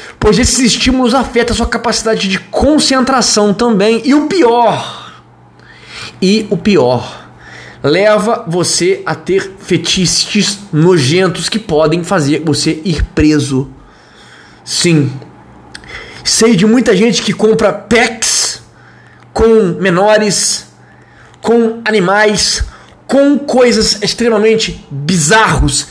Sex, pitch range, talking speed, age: male, 190-245 Hz, 100 wpm, 20-39